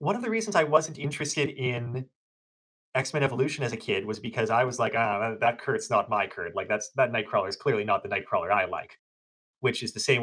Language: English